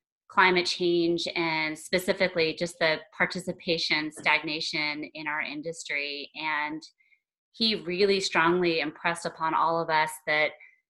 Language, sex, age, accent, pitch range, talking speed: English, female, 30-49, American, 155-180 Hz, 115 wpm